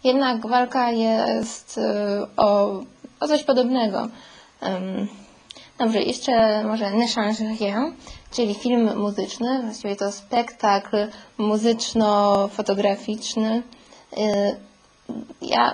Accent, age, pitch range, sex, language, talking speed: native, 20-39, 210-235 Hz, female, Polish, 75 wpm